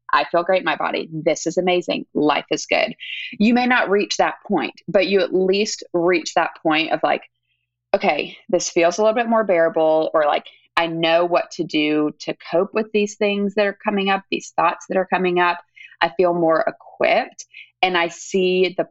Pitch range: 160-205 Hz